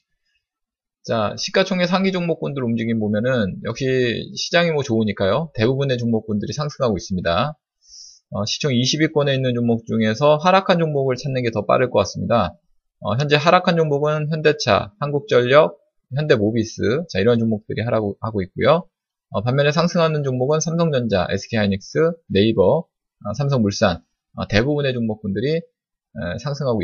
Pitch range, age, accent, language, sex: 110-165 Hz, 20-39, native, Korean, male